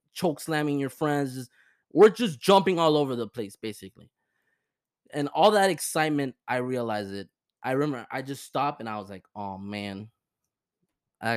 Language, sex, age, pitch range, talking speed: English, male, 20-39, 110-140 Hz, 165 wpm